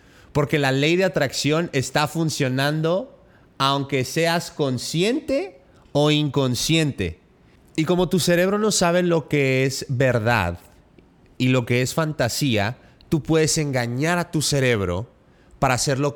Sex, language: male, Spanish